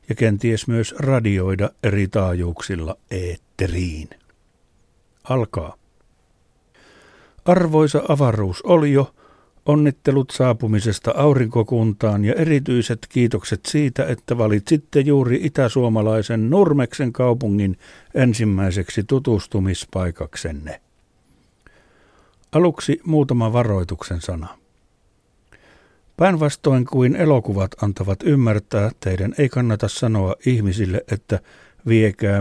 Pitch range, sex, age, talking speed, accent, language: 100-130 Hz, male, 60-79, 80 wpm, native, Finnish